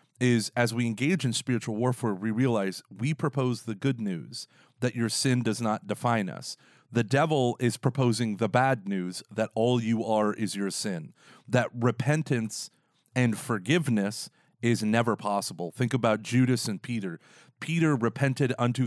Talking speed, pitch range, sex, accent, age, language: 160 wpm, 110-130 Hz, male, American, 30-49, English